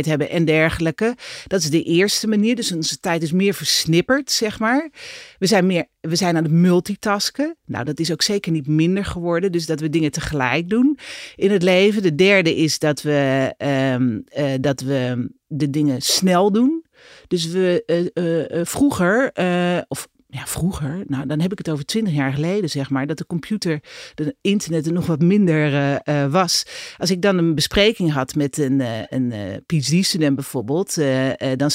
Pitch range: 155-210 Hz